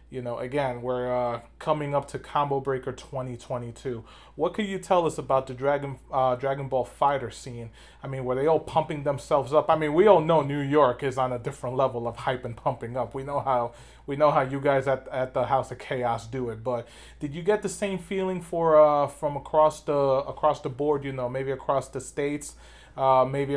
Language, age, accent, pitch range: English, 30-49, American, 125-150 Hz